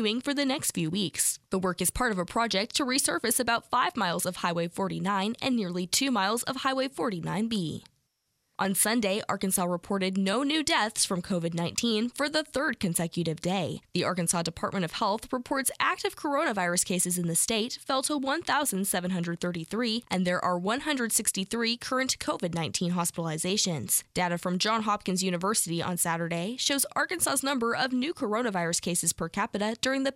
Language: English